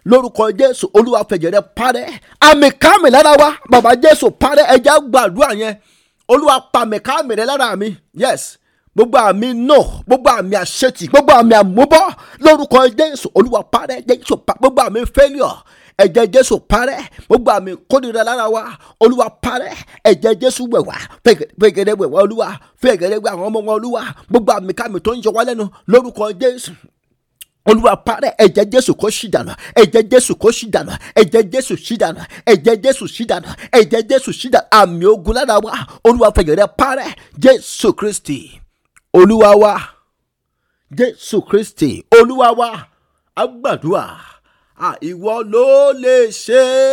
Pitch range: 210-260 Hz